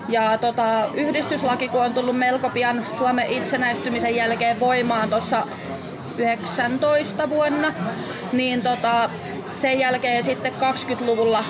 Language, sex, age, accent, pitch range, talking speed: Finnish, female, 20-39, native, 230-260 Hz, 100 wpm